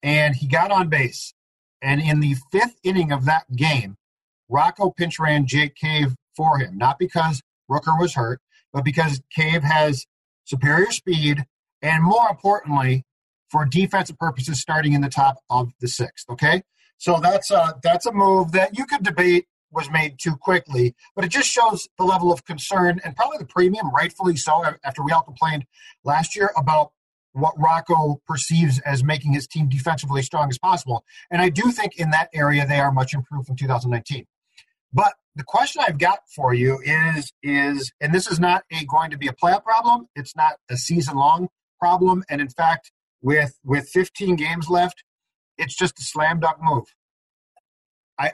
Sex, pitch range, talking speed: male, 140-180 Hz, 180 wpm